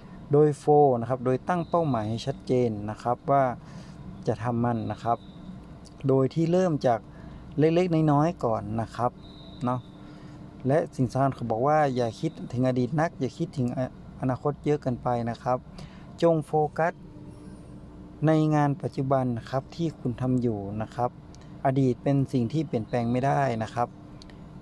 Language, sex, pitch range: Thai, male, 120-150 Hz